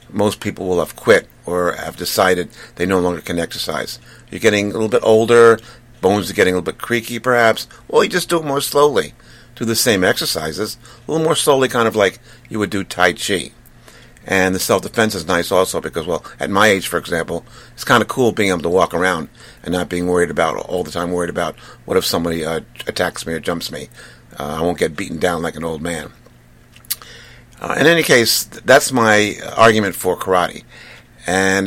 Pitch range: 90-115 Hz